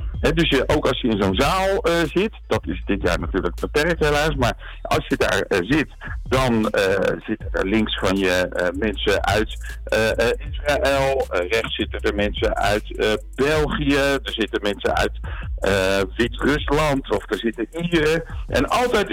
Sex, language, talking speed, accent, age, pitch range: male, Dutch, 175 wpm, Dutch, 60-79, 115-175 Hz